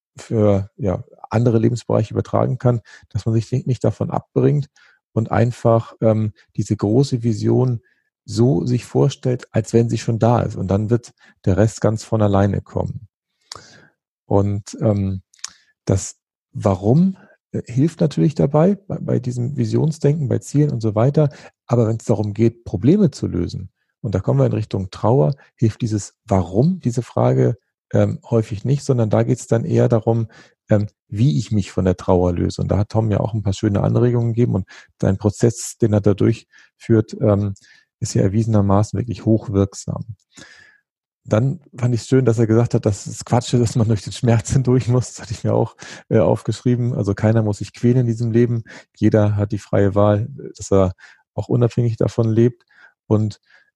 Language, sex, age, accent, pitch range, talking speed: German, male, 40-59, German, 105-125 Hz, 175 wpm